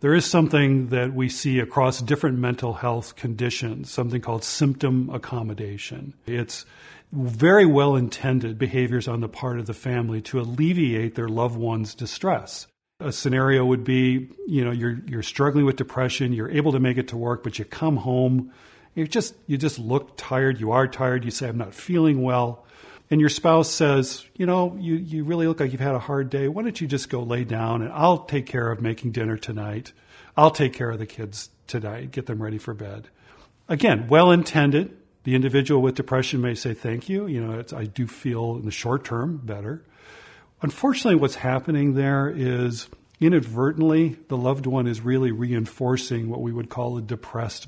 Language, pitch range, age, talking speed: English, 120-140 Hz, 40-59, 190 wpm